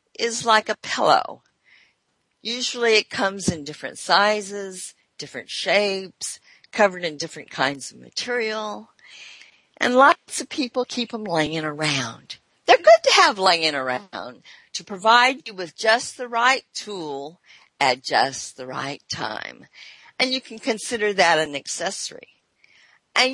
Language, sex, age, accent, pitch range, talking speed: English, female, 50-69, American, 155-260 Hz, 135 wpm